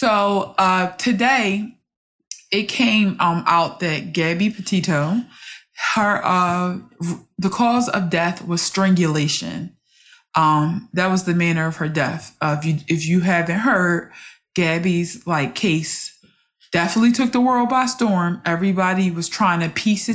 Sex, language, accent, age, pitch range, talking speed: female, English, American, 20-39, 160-195 Hz, 140 wpm